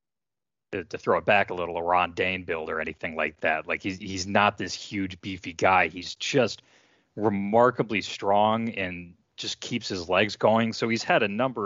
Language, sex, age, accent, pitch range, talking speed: English, male, 30-49, American, 90-115 Hz, 190 wpm